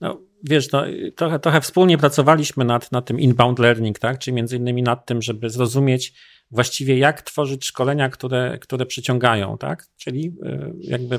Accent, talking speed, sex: native, 160 wpm, male